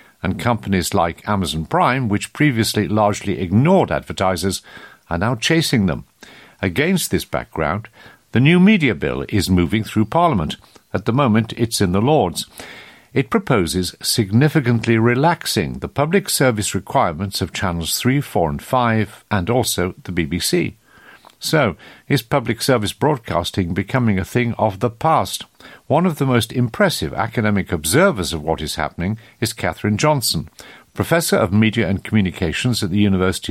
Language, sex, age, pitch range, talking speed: English, male, 50-69, 95-135 Hz, 150 wpm